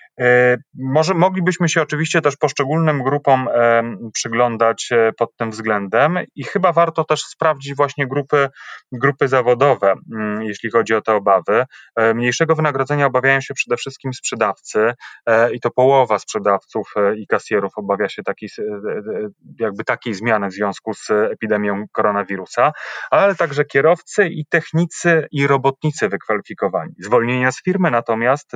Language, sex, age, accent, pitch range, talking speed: Polish, male, 30-49, native, 115-155 Hz, 130 wpm